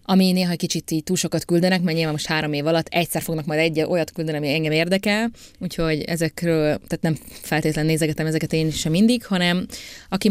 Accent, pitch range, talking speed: Finnish, 155-190 Hz, 200 wpm